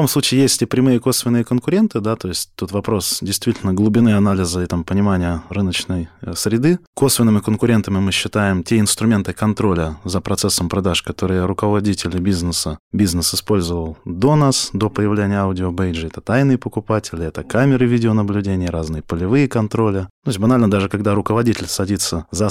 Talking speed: 155 wpm